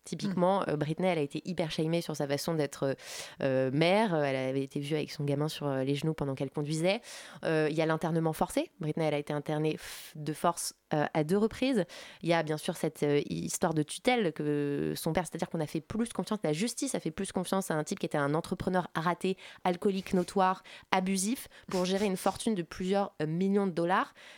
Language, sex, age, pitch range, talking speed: French, female, 20-39, 150-190 Hz, 215 wpm